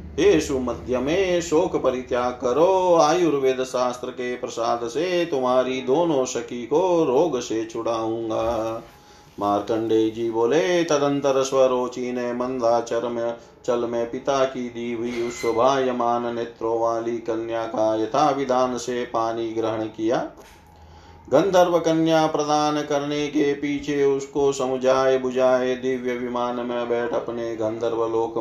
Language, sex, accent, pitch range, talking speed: Hindi, male, native, 115-140 Hz, 110 wpm